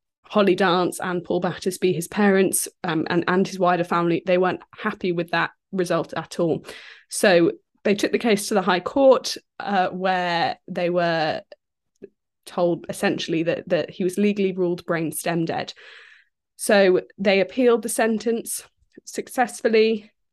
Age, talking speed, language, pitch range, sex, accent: 20-39, 150 wpm, English, 180-210 Hz, female, British